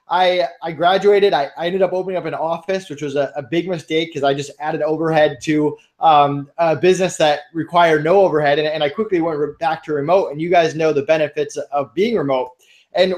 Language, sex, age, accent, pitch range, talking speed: English, male, 20-39, American, 150-195 Hz, 200 wpm